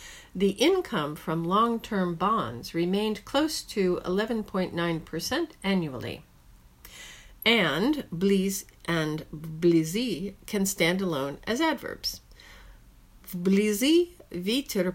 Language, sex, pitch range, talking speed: English, female, 160-205 Hz, 85 wpm